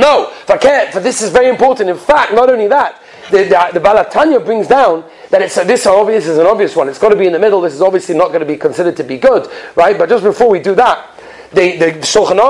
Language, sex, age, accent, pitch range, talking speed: English, male, 30-49, British, 205-265 Hz, 265 wpm